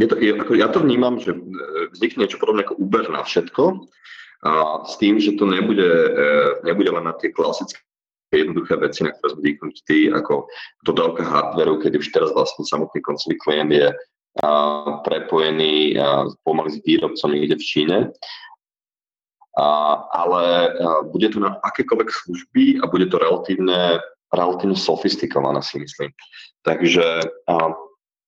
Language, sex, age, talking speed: Slovak, male, 30-49, 150 wpm